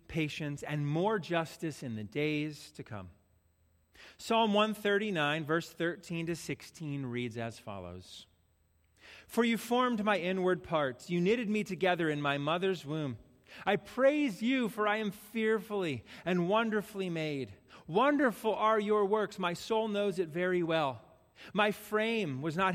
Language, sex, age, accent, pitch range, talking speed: English, male, 30-49, American, 130-210 Hz, 150 wpm